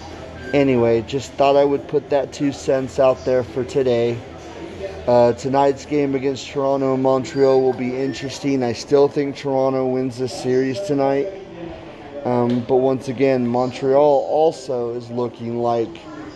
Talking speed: 145 wpm